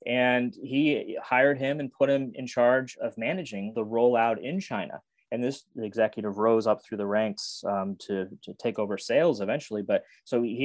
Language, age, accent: English, 20-39, American